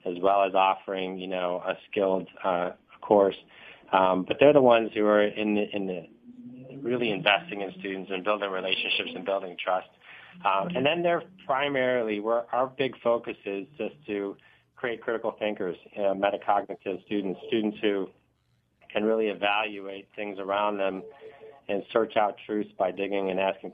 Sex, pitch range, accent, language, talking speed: male, 95-105 Hz, American, English, 165 wpm